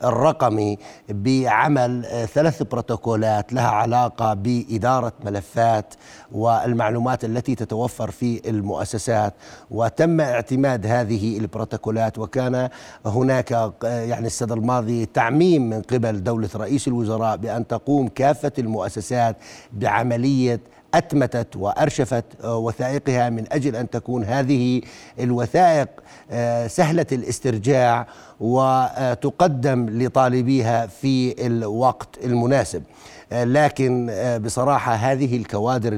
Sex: male